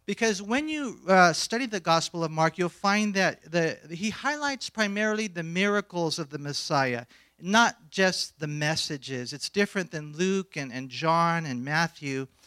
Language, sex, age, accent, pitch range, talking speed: English, male, 50-69, American, 155-205 Hz, 160 wpm